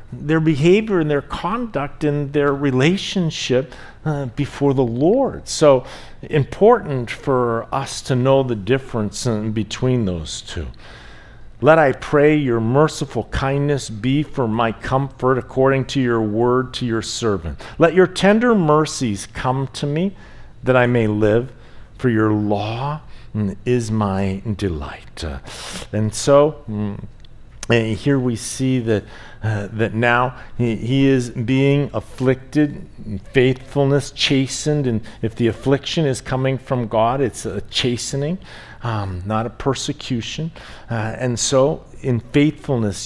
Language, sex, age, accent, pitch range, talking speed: English, male, 50-69, American, 110-140 Hz, 135 wpm